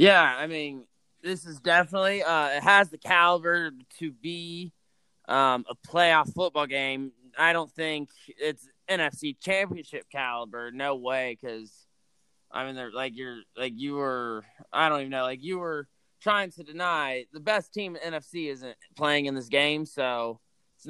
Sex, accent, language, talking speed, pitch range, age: male, American, English, 165 wpm, 130-175 Hz, 20-39